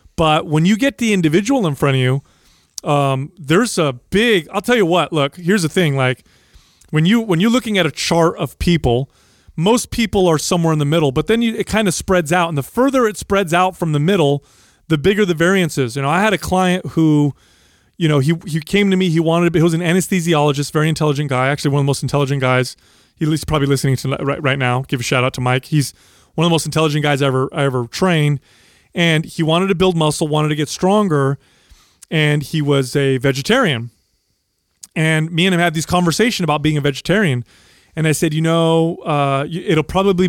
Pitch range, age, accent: 140-175 Hz, 30-49, American